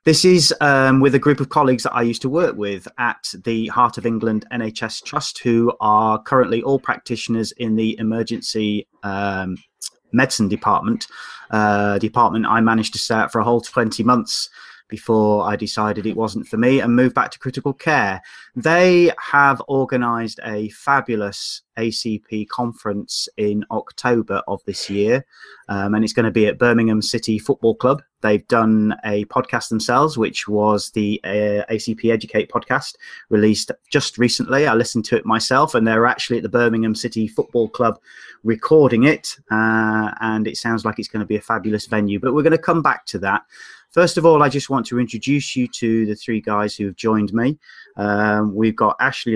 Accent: British